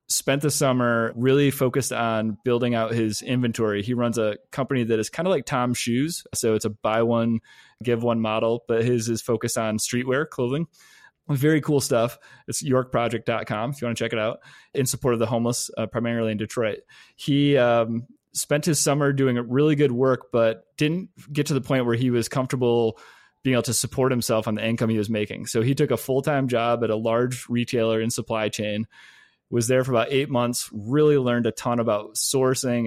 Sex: male